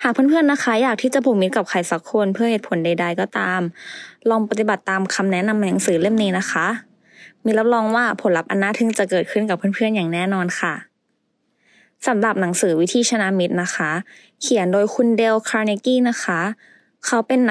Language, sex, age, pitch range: English, female, 20-39, 175-220 Hz